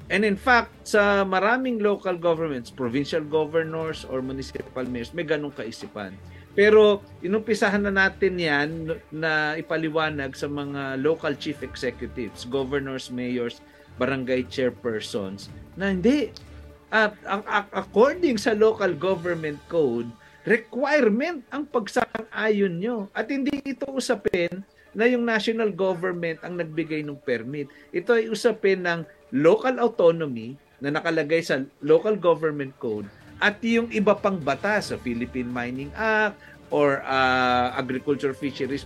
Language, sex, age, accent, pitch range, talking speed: Filipino, male, 50-69, native, 135-210 Hz, 125 wpm